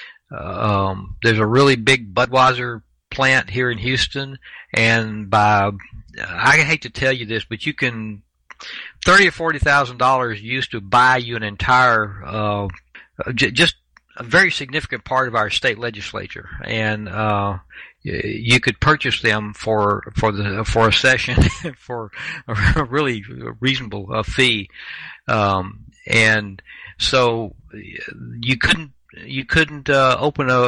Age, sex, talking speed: 60-79, male, 145 wpm